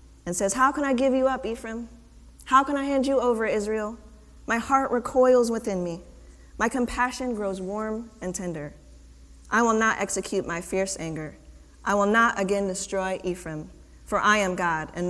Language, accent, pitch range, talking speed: English, American, 155-215 Hz, 180 wpm